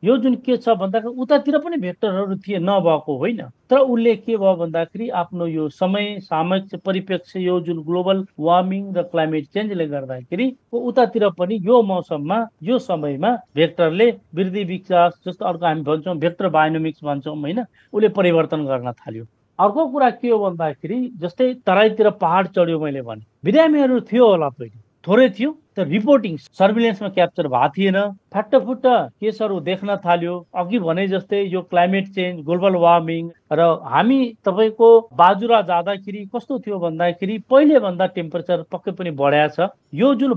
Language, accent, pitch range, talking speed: English, Indian, 165-225 Hz, 120 wpm